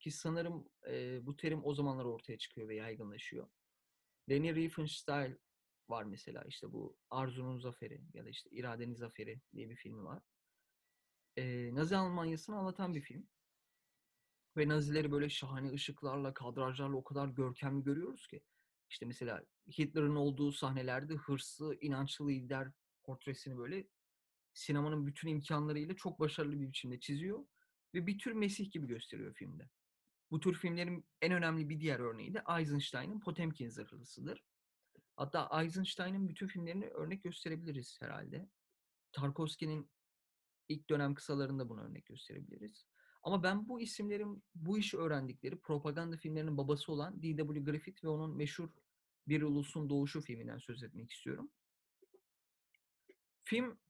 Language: Turkish